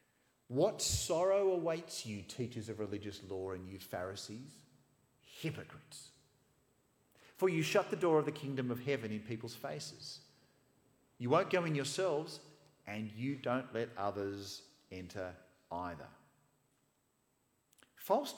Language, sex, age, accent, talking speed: English, male, 50-69, Australian, 125 wpm